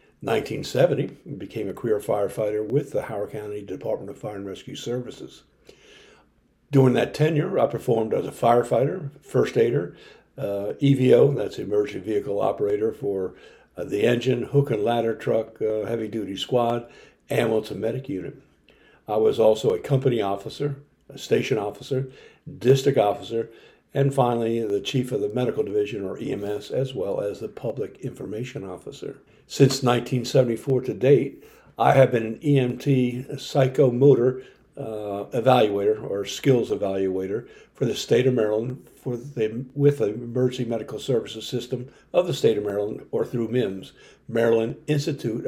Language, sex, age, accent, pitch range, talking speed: English, male, 60-79, American, 115-145 Hz, 145 wpm